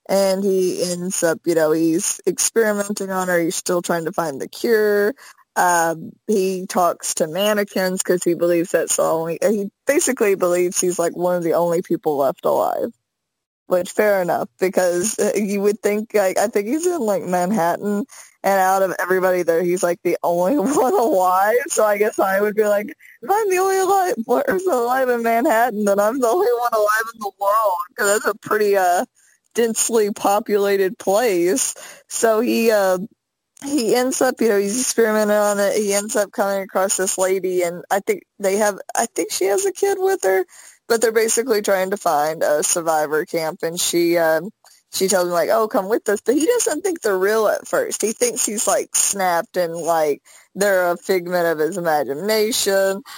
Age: 20-39